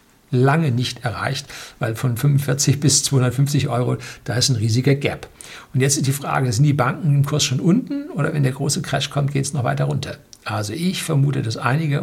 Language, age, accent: German, 60-79, German